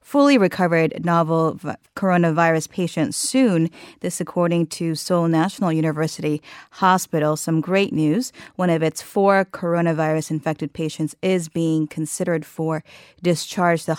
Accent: American